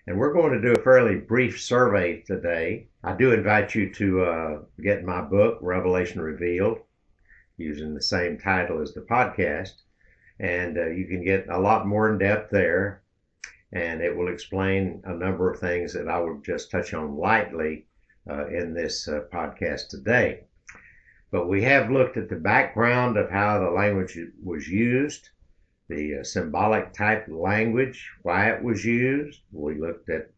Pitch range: 90-110 Hz